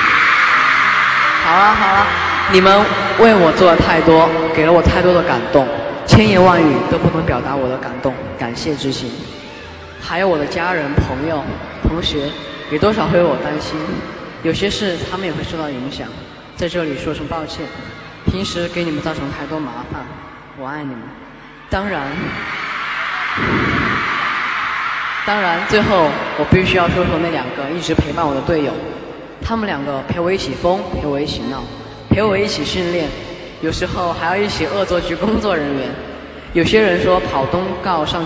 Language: Chinese